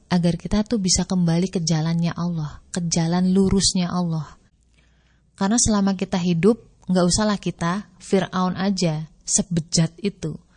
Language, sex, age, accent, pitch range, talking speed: Indonesian, female, 30-49, native, 165-195 Hz, 130 wpm